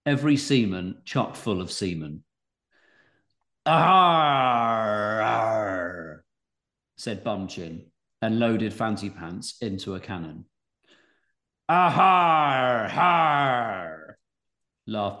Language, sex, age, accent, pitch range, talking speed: English, male, 40-59, British, 100-125 Hz, 70 wpm